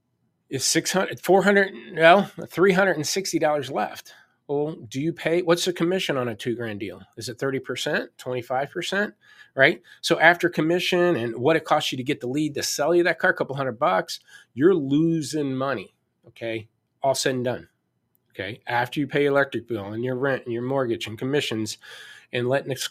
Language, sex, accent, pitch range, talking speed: English, male, American, 125-155 Hz, 180 wpm